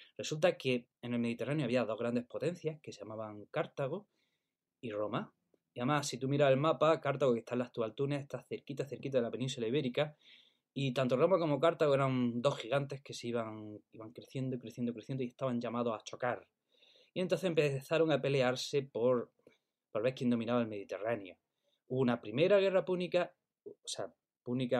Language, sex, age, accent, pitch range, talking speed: Spanish, male, 20-39, Spanish, 120-170 Hz, 180 wpm